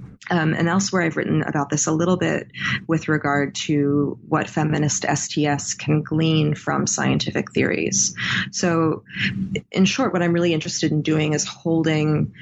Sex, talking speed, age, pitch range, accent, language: female, 155 wpm, 20-39, 150-180 Hz, American, English